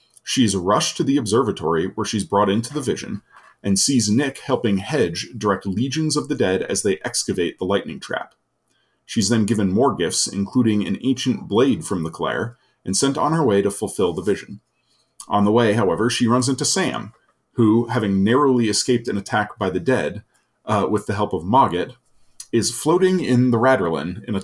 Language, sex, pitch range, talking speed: English, male, 100-125 Hz, 190 wpm